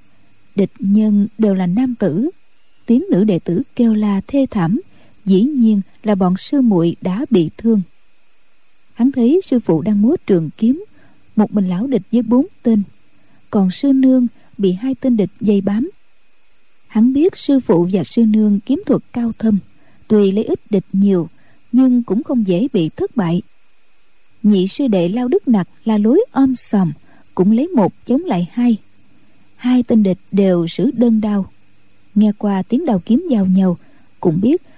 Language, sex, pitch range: Vietnamese, female, 190-250 Hz